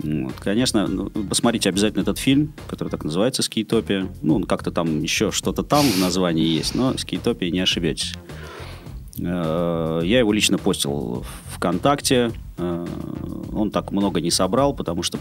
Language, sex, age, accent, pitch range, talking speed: Russian, male, 30-49, native, 85-115 Hz, 140 wpm